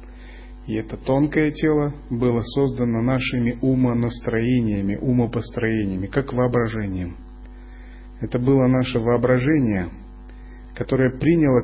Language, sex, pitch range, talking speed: Russian, male, 100-130 Hz, 90 wpm